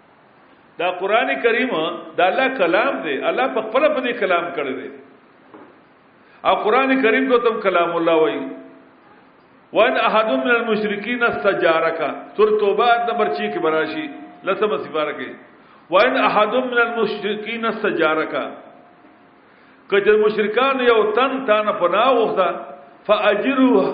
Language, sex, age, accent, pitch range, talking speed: English, male, 50-69, Indian, 200-255 Hz, 130 wpm